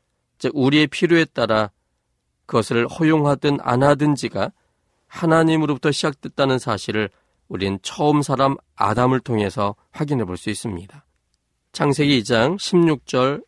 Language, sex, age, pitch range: Korean, male, 40-59, 95-145 Hz